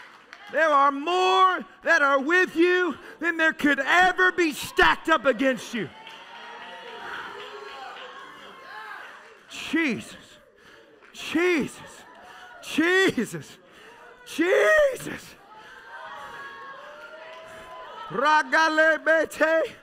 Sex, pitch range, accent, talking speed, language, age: male, 315-365 Hz, American, 65 wpm, English, 40-59